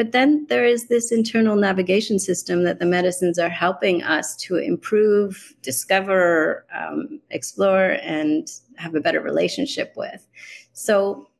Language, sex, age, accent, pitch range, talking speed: English, female, 30-49, American, 180-235 Hz, 135 wpm